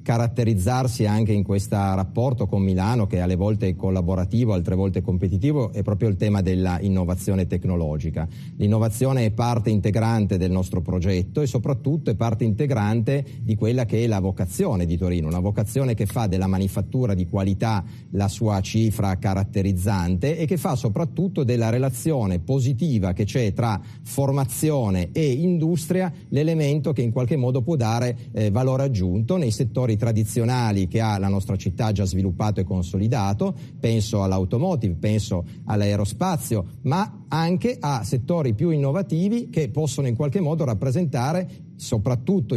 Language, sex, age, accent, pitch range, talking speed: Italian, male, 30-49, native, 100-145 Hz, 150 wpm